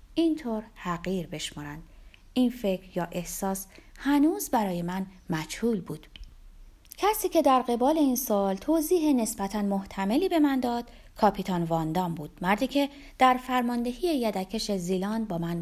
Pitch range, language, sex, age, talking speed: 170-270 Hz, Persian, female, 30-49, 140 wpm